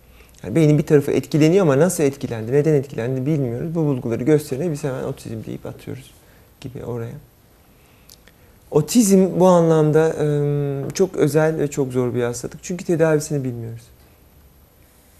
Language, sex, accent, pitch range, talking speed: Turkish, male, native, 100-160 Hz, 130 wpm